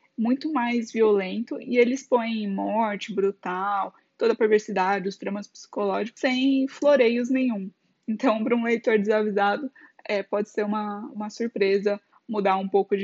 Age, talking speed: 10-29, 145 wpm